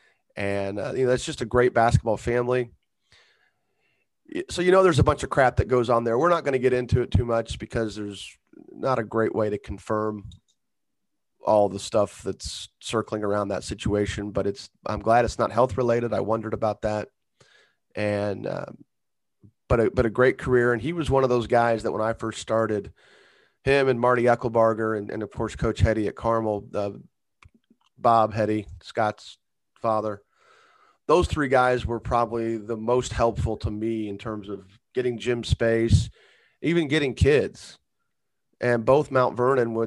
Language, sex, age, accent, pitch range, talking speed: English, male, 30-49, American, 105-120 Hz, 180 wpm